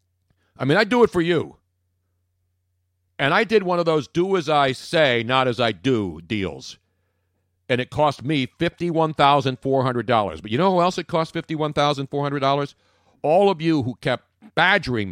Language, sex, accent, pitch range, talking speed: English, male, American, 100-170 Hz, 165 wpm